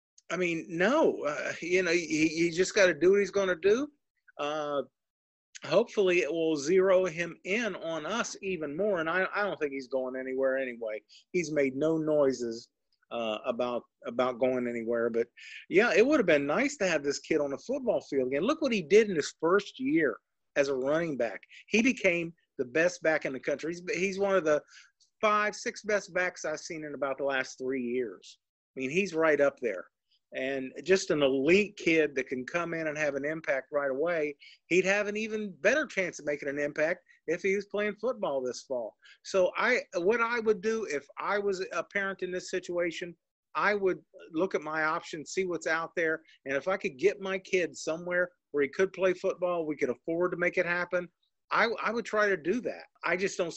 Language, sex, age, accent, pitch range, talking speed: English, male, 40-59, American, 145-195 Hz, 215 wpm